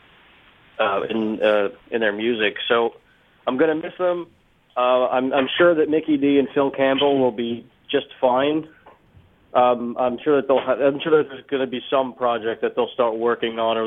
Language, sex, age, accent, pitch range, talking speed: English, male, 30-49, American, 115-135 Hz, 195 wpm